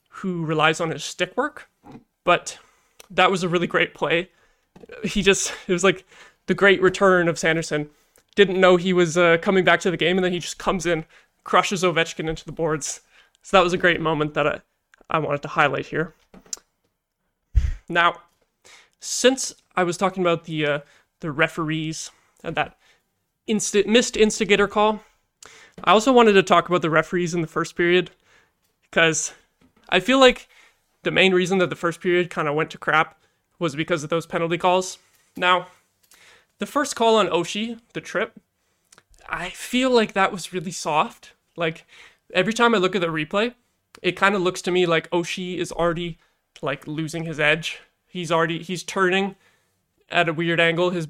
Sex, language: male, English